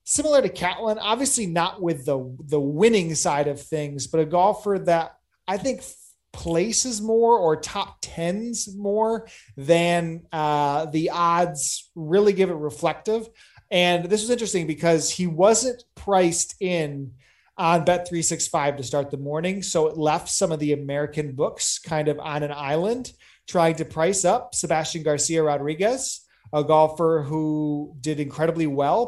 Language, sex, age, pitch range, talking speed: English, male, 30-49, 150-185 Hz, 155 wpm